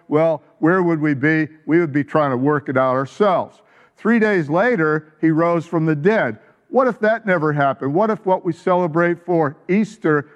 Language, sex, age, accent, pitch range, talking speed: English, male, 50-69, American, 155-185 Hz, 195 wpm